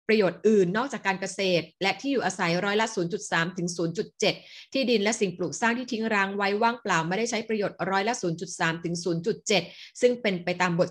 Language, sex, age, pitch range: Thai, female, 30-49, 180-235 Hz